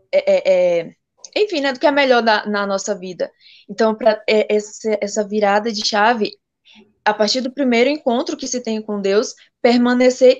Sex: female